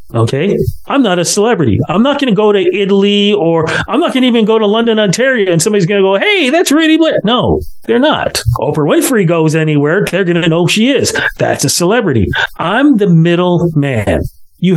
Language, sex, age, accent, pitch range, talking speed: English, male, 40-59, American, 145-200 Hz, 205 wpm